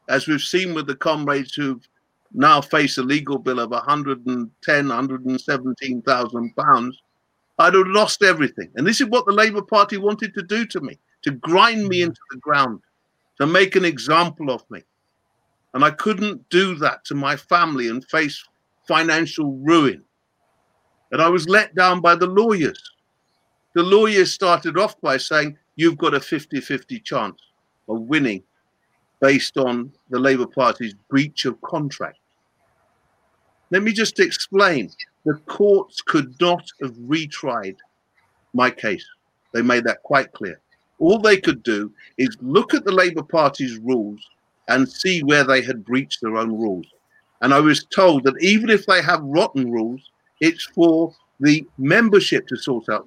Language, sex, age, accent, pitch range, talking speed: English, male, 50-69, British, 130-185 Hz, 160 wpm